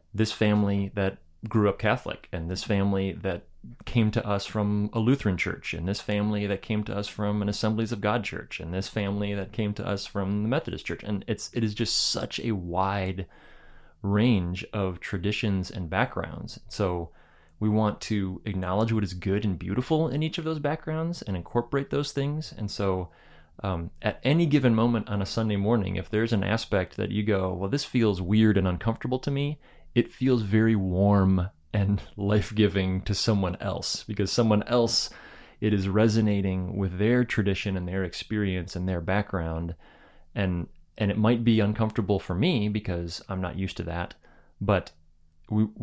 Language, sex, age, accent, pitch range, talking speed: English, male, 30-49, American, 95-110 Hz, 180 wpm